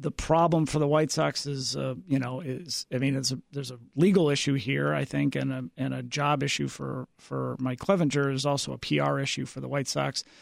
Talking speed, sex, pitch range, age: 235 wpm, male, 125-150 Hz, 40-59